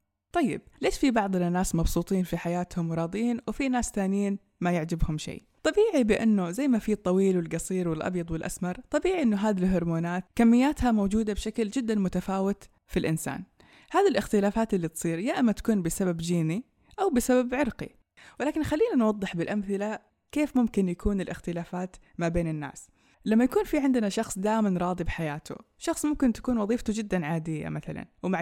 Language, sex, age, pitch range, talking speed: Persian, female, 20-39, 175-220 Hz, 155 wpm